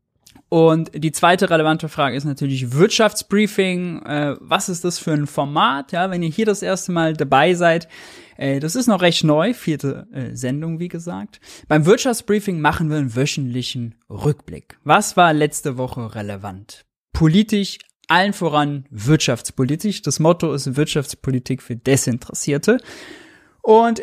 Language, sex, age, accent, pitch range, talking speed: German, male, 20-39, German, 135-180 Hz, 135 wpm